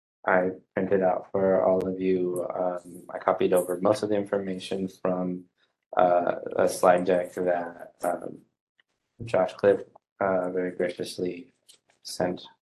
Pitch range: 85-95 Hz